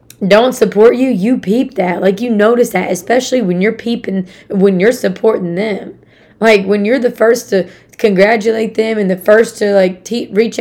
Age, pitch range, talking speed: 20-39, 195-235 Hz, 180 wpm